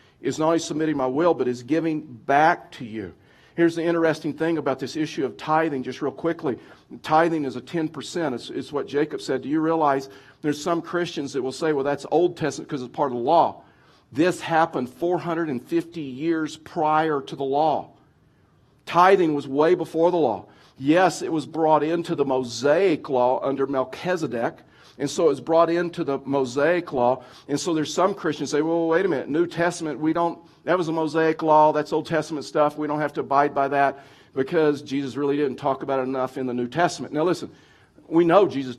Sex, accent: male, American